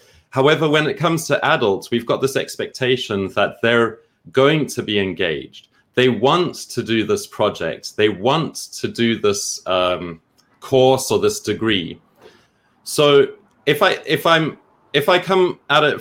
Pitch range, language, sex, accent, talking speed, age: 105-135 Hz, English, male, British, 155 wpm, 30-49